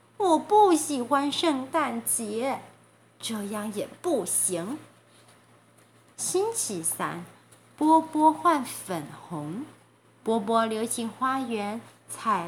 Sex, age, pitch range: female, 30-49, 230-350 Hz